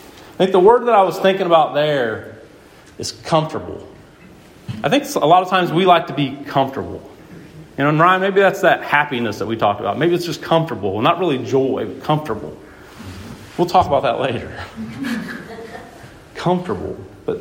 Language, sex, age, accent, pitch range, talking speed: English, male, 40-59, American, 155-220 Hz, 175 wpm